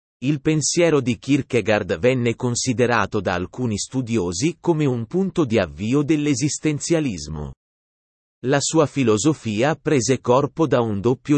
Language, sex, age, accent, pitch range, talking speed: Italian, male, 30-49, native, 105-145 Hz, 120 wpm